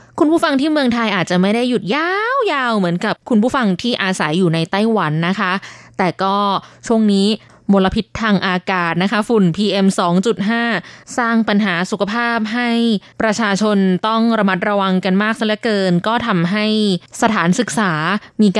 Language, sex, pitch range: Thai, female, 190-235 Hz